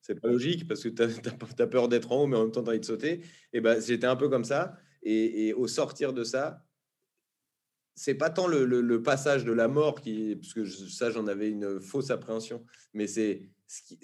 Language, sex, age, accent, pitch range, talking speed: French, male, 30-49, French, 110-150 Hz, 245 wpm